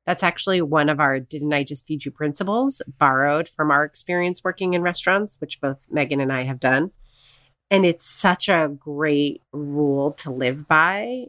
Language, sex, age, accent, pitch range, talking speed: English, female, 30-49, American, 140-180 Hz, 180 wpm